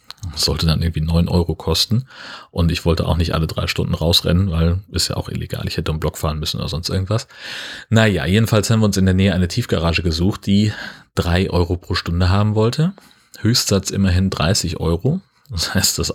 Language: German